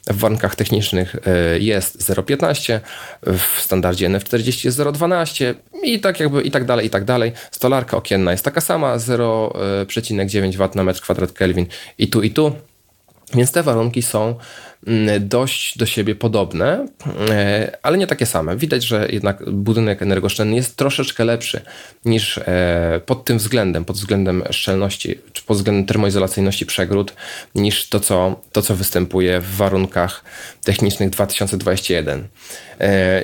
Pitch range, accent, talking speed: 95-120 Hz, native, 135 wpm